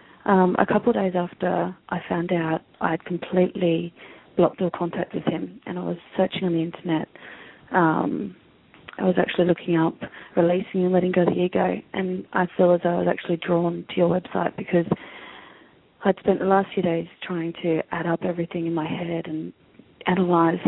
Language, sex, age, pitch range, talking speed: English, female, 30-49, 175-190 Hz, 190 wpm